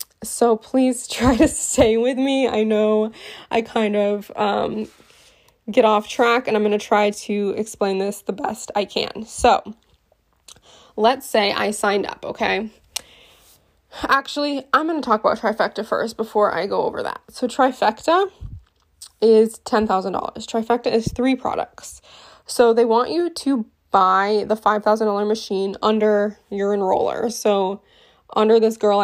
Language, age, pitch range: English, 20-39, 205-235 Hz